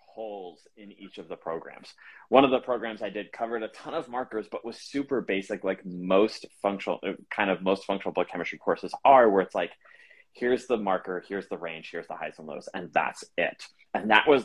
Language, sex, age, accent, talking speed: English, male, 30-49, American, 215 wpm